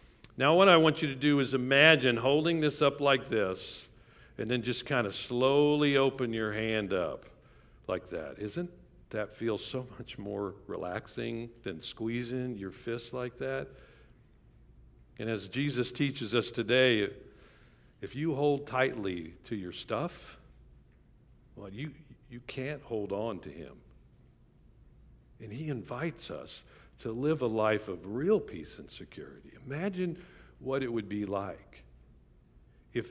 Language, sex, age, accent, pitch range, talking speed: English, male, 60-79, American, 105-135 Hz, 145 wpm